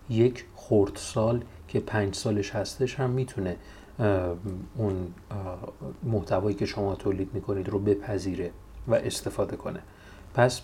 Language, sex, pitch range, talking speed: Persian, male, 100-130 Hz, 115 wpm